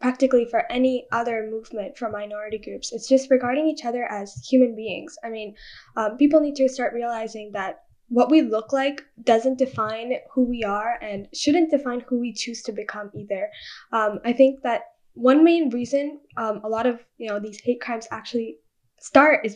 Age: 10-29